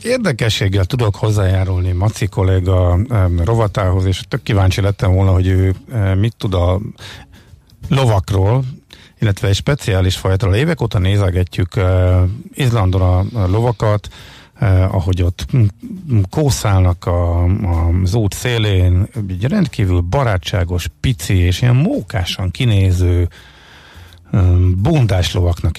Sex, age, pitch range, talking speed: male, 50-69, 90-115 Hz, 115 wpm